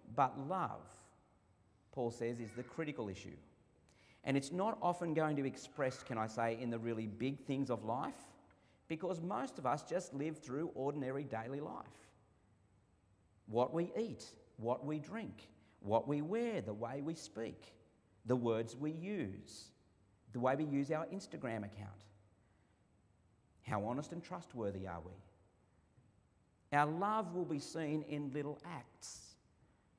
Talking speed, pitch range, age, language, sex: 150 wpm, 105-165 Hz, 40-59, English, male